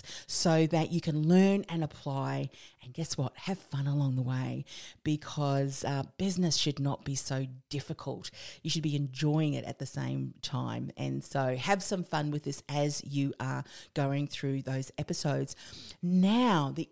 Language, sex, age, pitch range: English, female, 40-59, 140-175 Hz